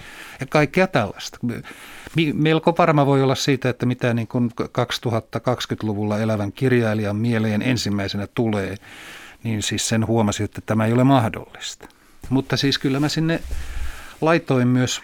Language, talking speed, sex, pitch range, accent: Finnish, 135 wpm, male, 110-135 Hz, native